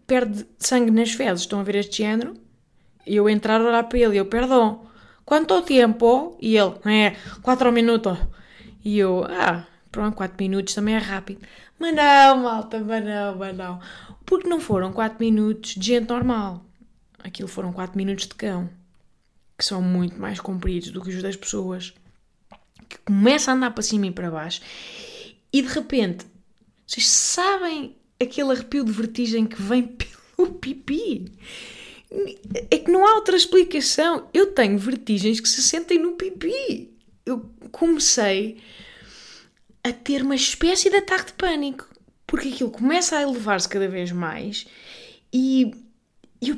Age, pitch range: 20-39, 205-300 Hz